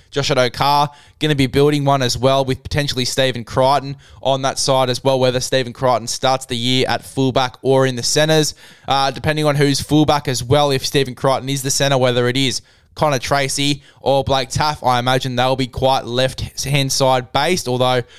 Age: 10-29